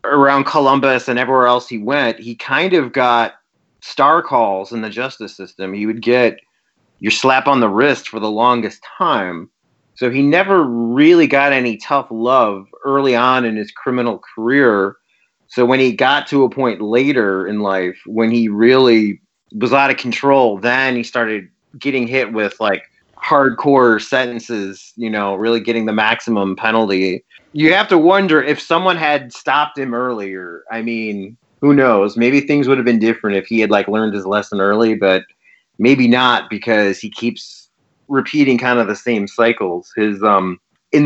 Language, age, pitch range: English, 30-49, 110-130 Hz